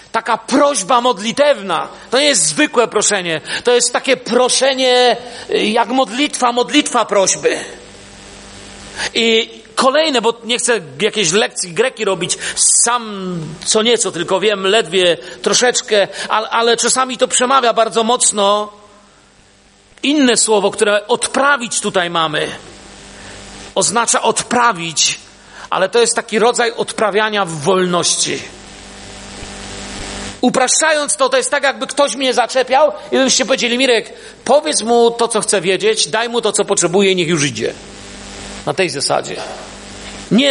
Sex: male